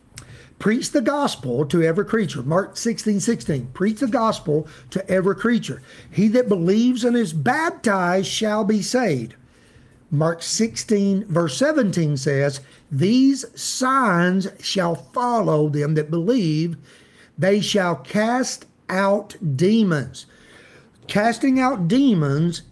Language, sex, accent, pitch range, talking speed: English, male, American, 160-230 Hz, 115 wpm